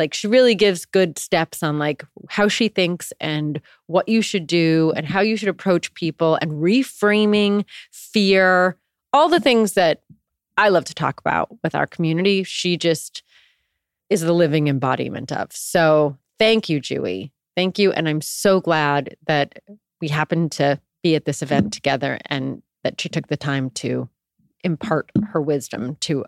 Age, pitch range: 30-49, 170-225 Hz